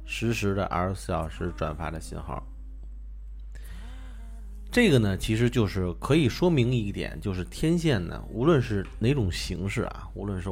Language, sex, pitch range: Chinese, male, 85-125 Hz